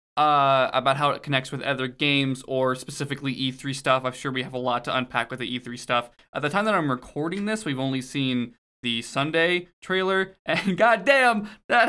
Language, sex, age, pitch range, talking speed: English, male, 20-39, 125-150 Hz, 200 wpm